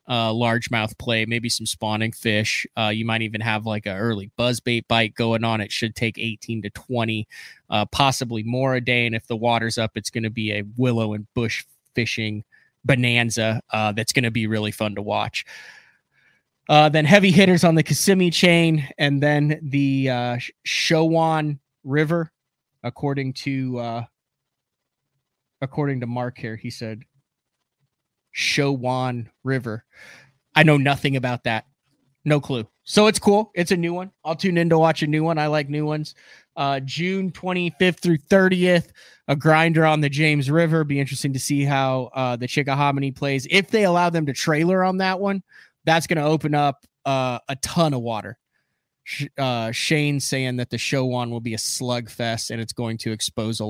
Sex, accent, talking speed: male, American, 180 wpm